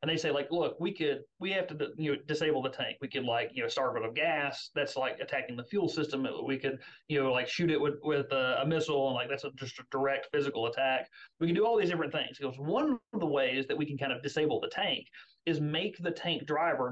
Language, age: English, 30-49